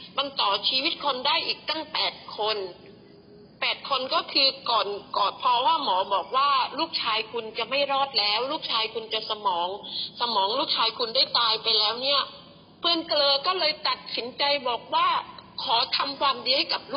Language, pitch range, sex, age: Thai, 230-325 Hz, female, 30-49